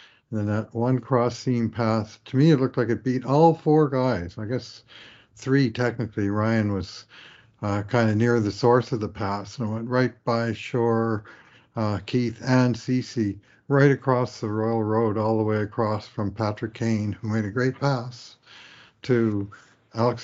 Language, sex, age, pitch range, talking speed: English, male, 60-79, 110-130 Hz, 170 wpm